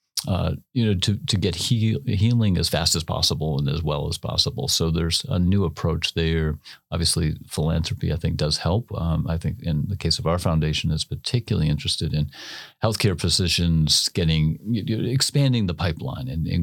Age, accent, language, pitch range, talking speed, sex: 40-59, American, English, 85-110 Hz, 175 wpm, male